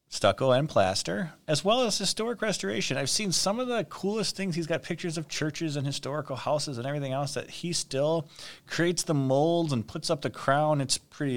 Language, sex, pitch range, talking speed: English, male, 115-155 Hz, 205 wpm